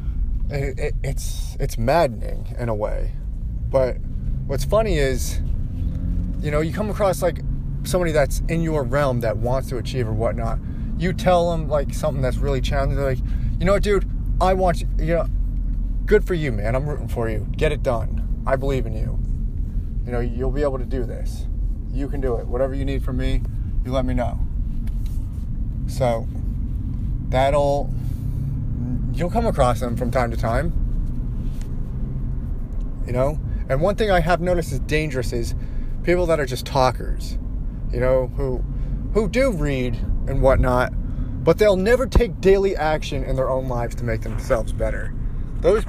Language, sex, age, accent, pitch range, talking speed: English, male, 30-49, American, 115-140 Hz, 175 wpm